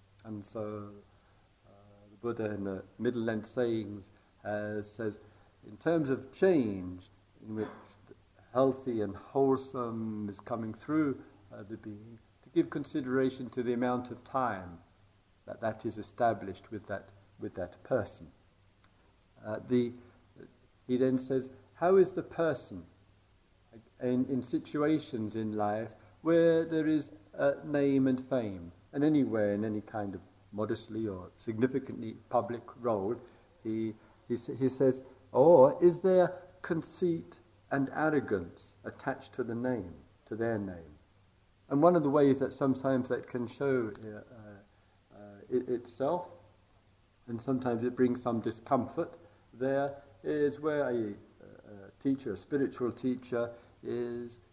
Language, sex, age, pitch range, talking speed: English, male, 50-69, 100-130 Hz, 135 wpm